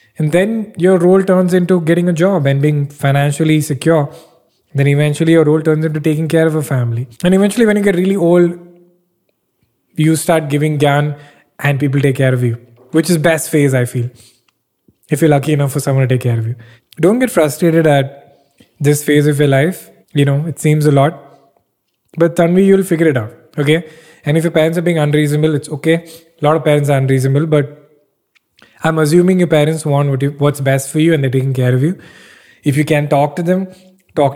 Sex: male